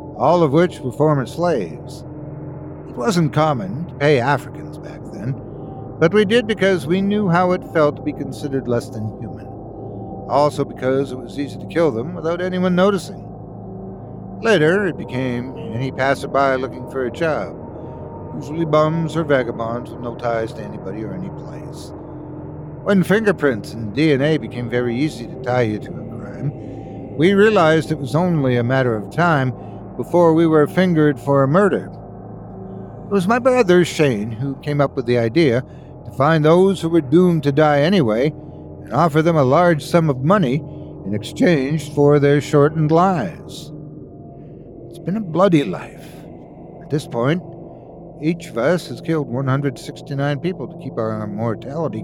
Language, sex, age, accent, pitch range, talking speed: English, male, 60-79, American, 125-170 Hz, 165 wpm